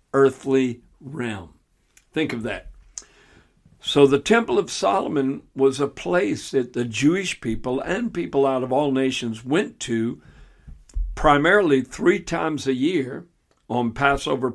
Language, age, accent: English, 60-79, American